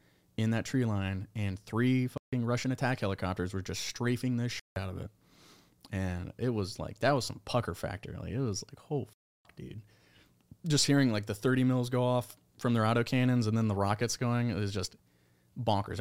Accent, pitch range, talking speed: American, 95-125 Hz, 205 wpm